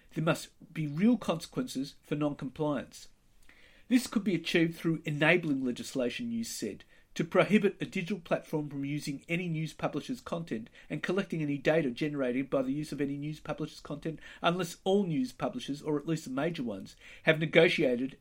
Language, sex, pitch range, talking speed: English, male, 150-205 Hz, 170 wpm